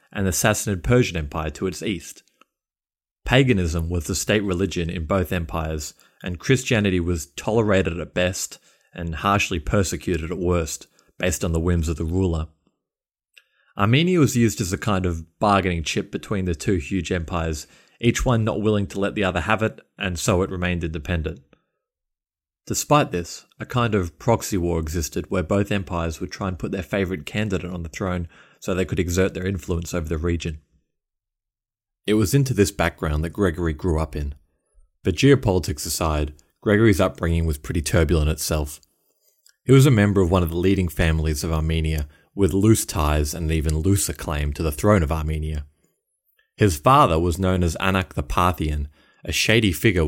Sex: male